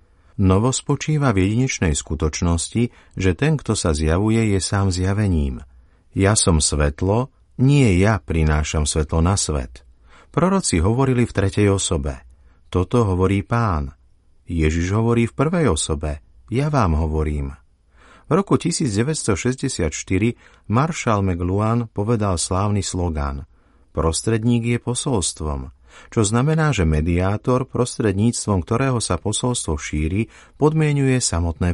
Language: Slovak